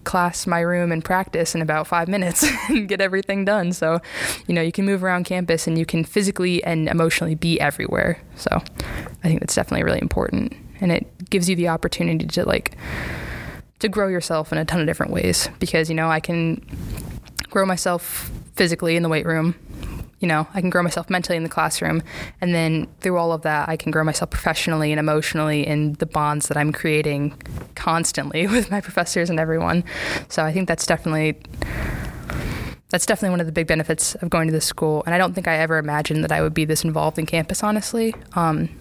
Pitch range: 160-180 Hz